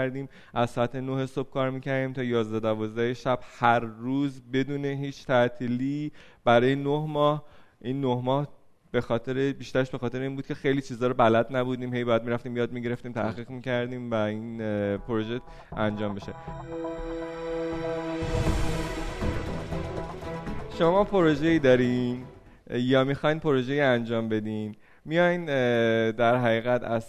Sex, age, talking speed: male, 20-39, 130 wpm